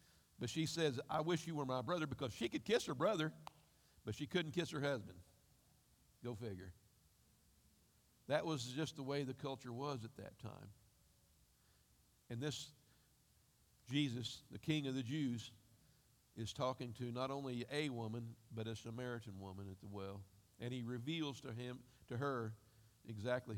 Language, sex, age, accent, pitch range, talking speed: English, male, 50-69, American, 115-145 Hz, 165 wpm